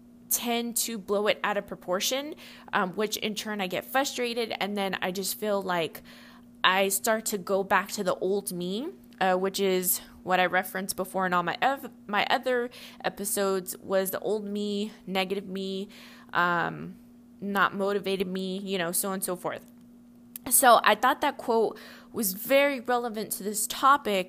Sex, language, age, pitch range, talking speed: female, English, 20-39, 185-240 Hz, 175 wpm